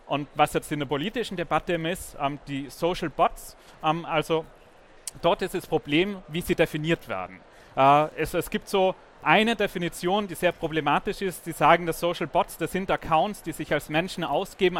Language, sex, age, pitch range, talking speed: German, male, 30-49, 145-170 Hz, 170 wpm